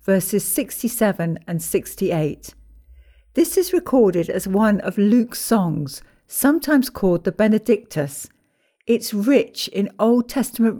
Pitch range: 165-220 Hz